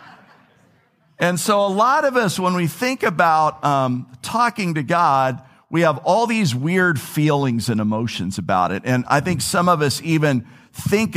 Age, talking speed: 50-69, 170 wpm